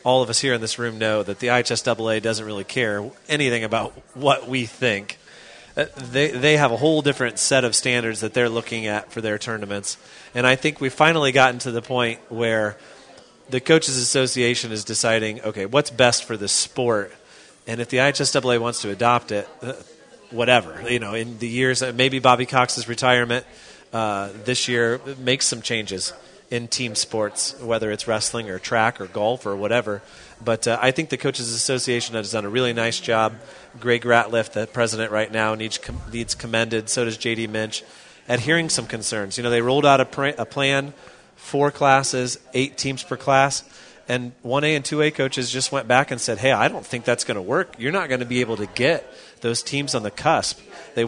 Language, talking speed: English, 200 wpm